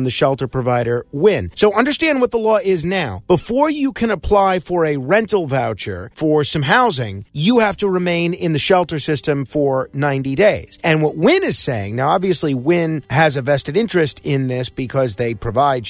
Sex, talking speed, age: male, 190 wpm, 40-59